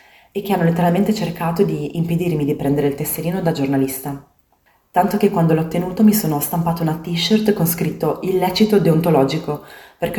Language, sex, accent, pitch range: Italian, female, native, 160-200 Hz